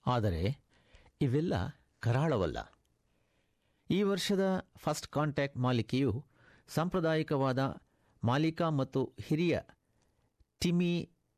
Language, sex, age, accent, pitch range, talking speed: Kannada, male, 60-79, native, 110-145 Hz, 70 wpm